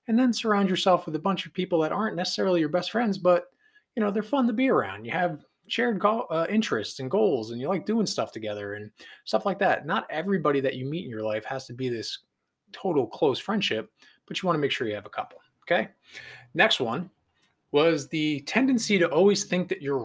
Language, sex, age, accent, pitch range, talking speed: English, male, 20-39, American, 120-175 Hz, 230 wpm